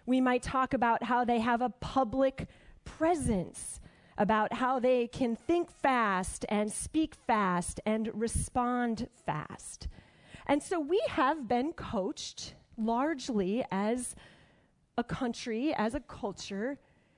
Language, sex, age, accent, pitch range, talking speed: English, female, 30-49, American, 195-260 Hz, 120 wpm